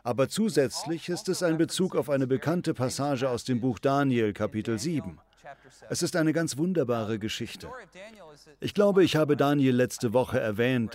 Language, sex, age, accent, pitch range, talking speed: German, male, 40-59, German, 120-160 Hz, 165 wpm